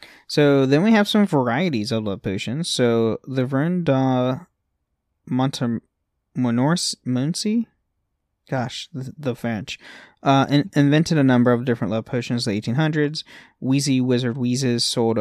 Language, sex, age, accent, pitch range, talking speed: English, male, 20-39, American, 115-150 Hz, 135 wpm